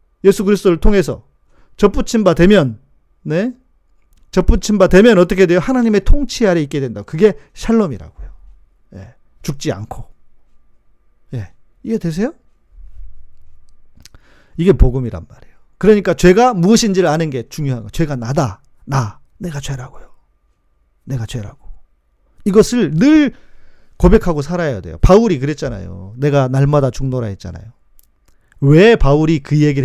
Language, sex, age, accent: Korean, male, 40-59, native